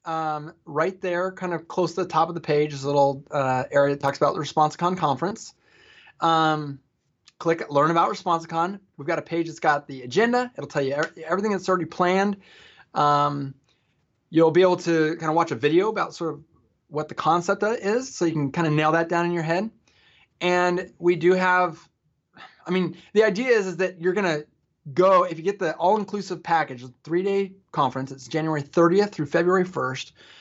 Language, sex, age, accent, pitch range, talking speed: English, male, 20-39, American, 145-185 Hz, 205 wpm